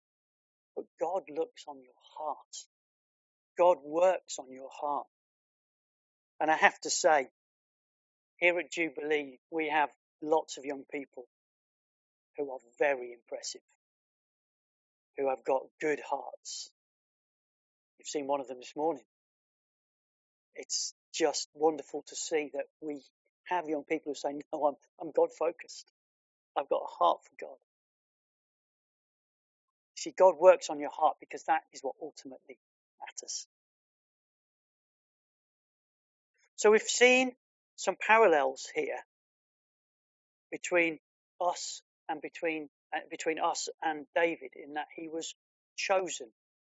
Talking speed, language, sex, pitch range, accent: 120 wpm, English, male, 145-185 Hz, British